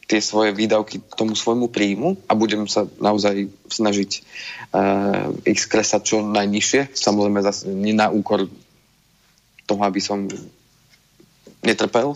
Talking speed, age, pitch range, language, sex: 130 wpm, 30-49, 105-120 Hz, Slovak, male